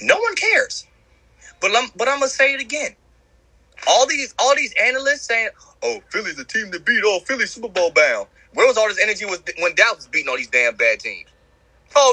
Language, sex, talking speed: English, male, 215 wpm